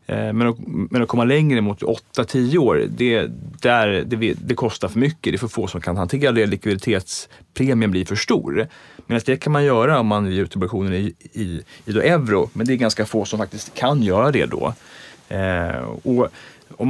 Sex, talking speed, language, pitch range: male, 180 wpm, Swedish, 105-140 Hz